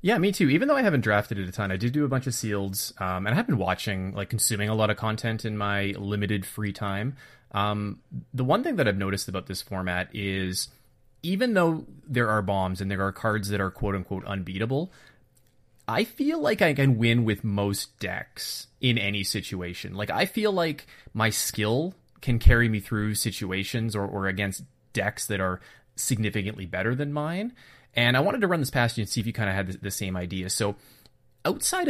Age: 30-49